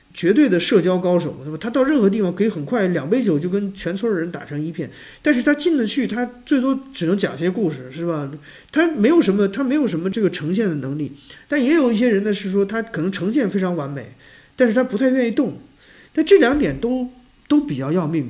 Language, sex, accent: Chinese, male, native